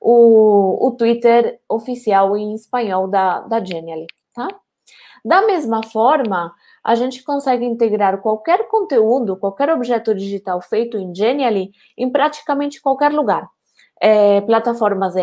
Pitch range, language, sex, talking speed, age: 215-270 Hz, Portuguese, female, 120 wpm, 20-39